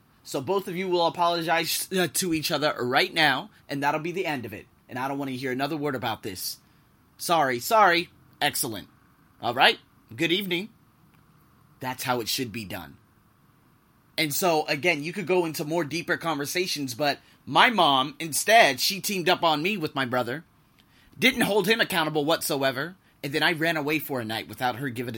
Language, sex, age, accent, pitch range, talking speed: English, male, 30-49, American, 135-180 Hz, 190 wpm